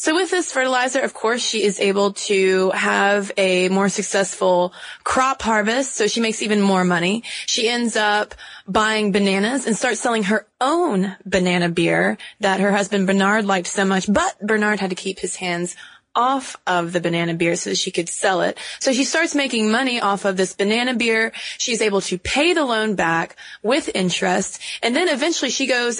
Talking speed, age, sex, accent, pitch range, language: 190 wpm, 20-39, female, American, 190-245 Hz, English